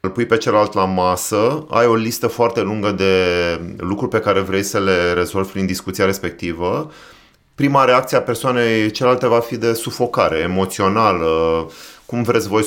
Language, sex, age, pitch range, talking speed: Romanian, male, 30-49, 95-115 Hz, 165 wpm